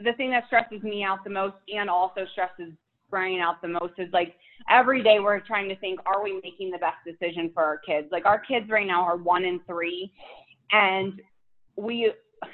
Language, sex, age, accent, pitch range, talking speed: English, female, 20-39, American, 180-220 Hz, 205 wpm